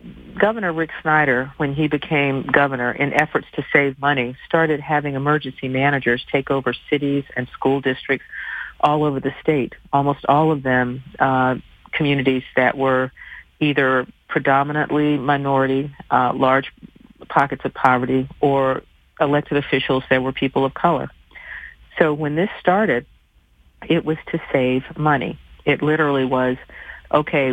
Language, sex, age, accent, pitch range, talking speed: English, female, 50-69, American, 130-150 Hz, 135 wpm